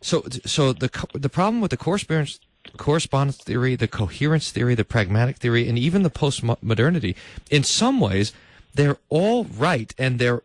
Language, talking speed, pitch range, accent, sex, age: English, 165 wpm, 115-175 Hz, American, male, 40-59